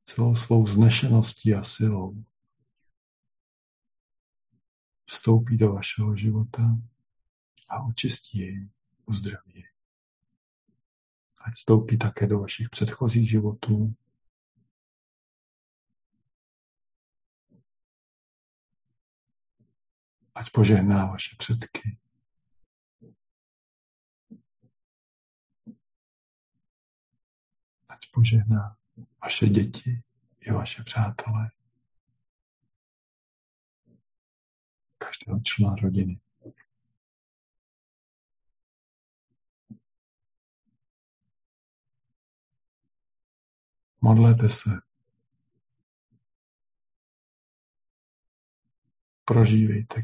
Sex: male